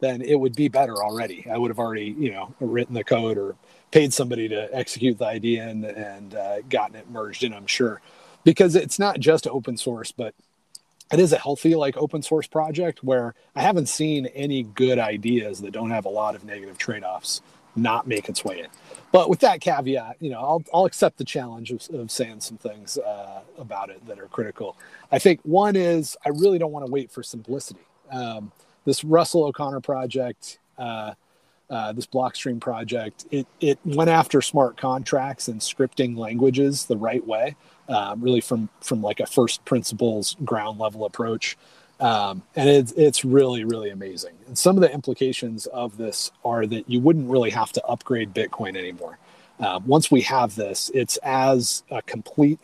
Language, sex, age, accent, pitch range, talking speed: English, male, 30-49, American, 115-145 Hz, 190 wpm